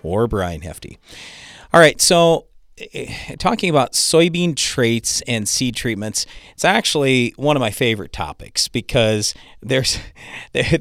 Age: 40-59